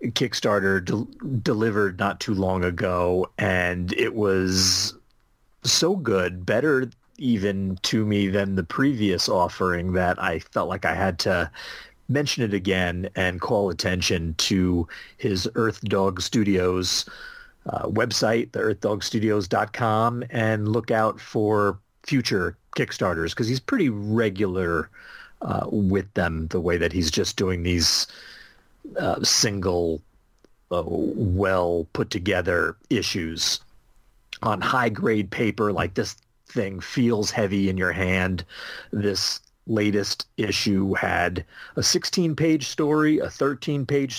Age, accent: 40-59, American